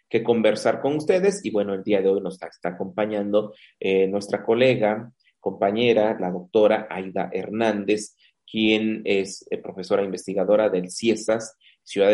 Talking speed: 150 wpm